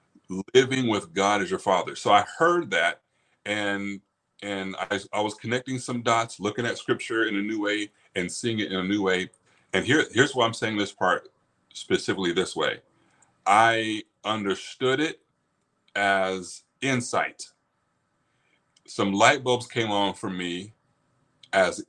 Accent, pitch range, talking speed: American, 95-125 Hz, 155 wpm